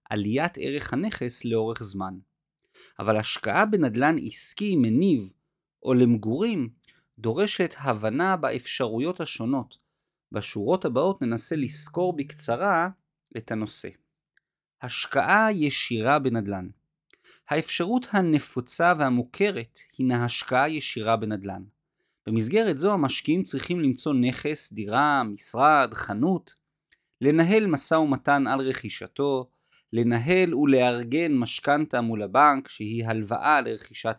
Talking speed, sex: 95 wpm, male